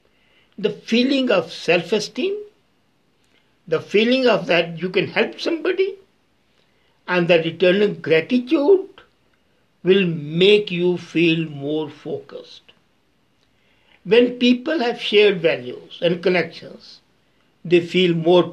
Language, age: English, 60-79